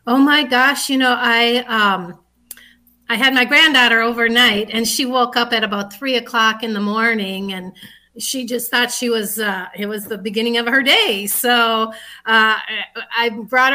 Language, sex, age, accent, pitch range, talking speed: English, female, 40-59, American, 205-245 Hz, 180 wpm